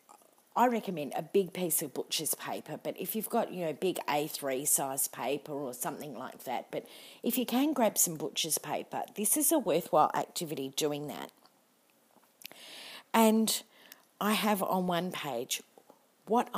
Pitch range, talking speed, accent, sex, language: 155-220 Hz, 160 wpm, Australian, female, English